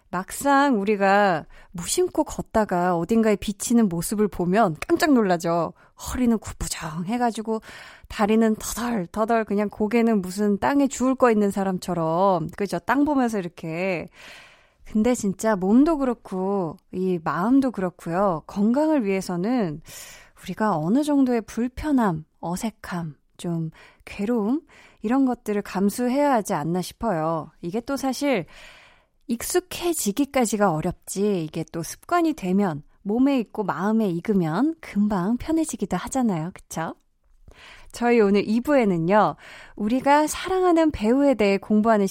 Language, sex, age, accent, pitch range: Korean, female, 20-39, native, 185-245 Hz